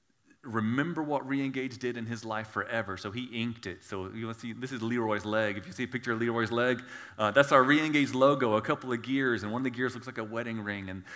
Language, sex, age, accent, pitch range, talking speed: English, male, 30-49, American, 115-155 Hz, 255 wpm